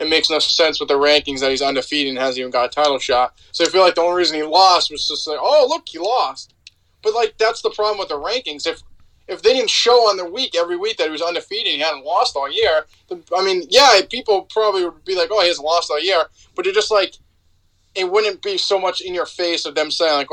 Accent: American